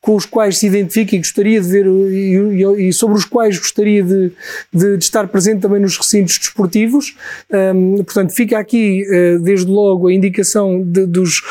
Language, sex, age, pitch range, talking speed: Portuguese, male, 20-39, 190-215 Hz, 165 wpm